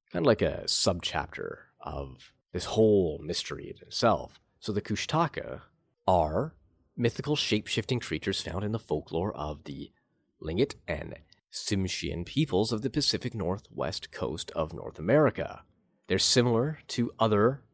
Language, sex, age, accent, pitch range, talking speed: English, male, 30-49, American, 85-120 Hz, 135 wpm